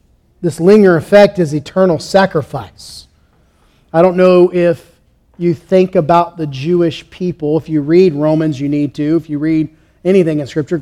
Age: 40-59